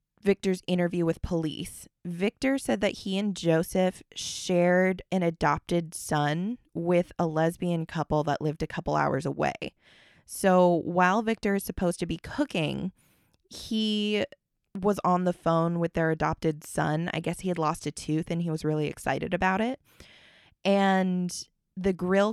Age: 20-39